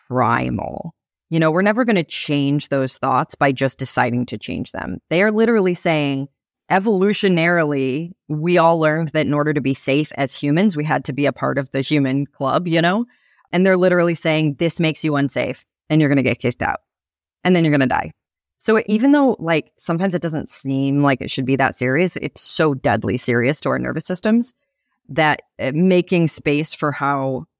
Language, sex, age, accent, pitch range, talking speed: English, female, 20-39, American, 140-180 Hz, 200 wpm